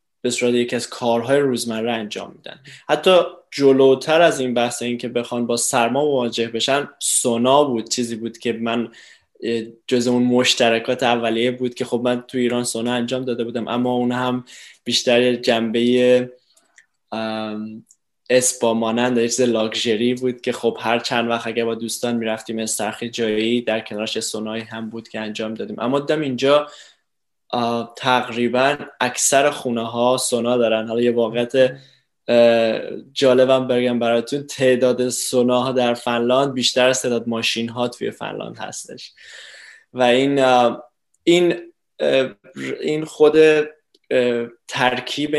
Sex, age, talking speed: male, 10-29, 135 wpm